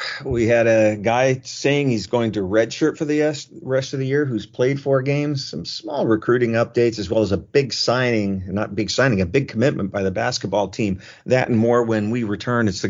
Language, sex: English, male